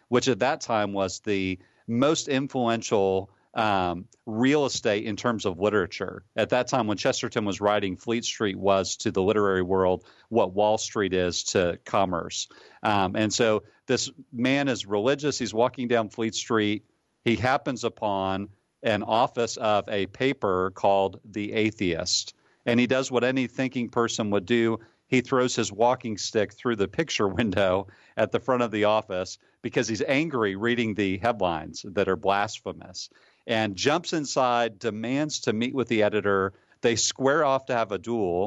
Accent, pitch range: American, 100-125 Hz